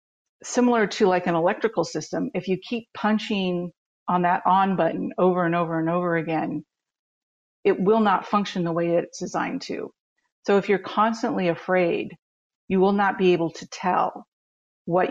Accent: American